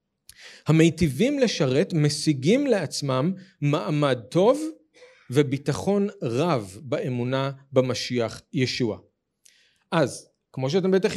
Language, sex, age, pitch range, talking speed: Hebrew, male, 40-59, 130-175 Hz, 80 wpm